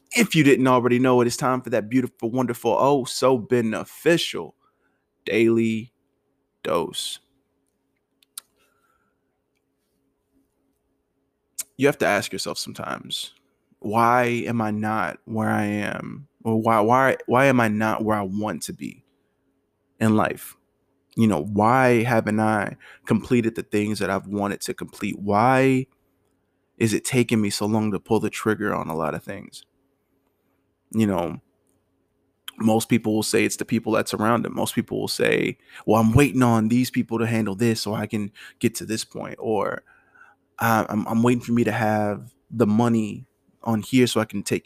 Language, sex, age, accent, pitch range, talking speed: English, male, 20-39, American, 105-120 Hz, 165 wpm